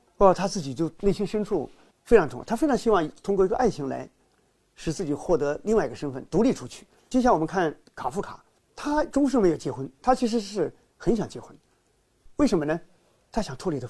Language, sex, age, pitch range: Chinese, male, 50-69, 155-235 Hz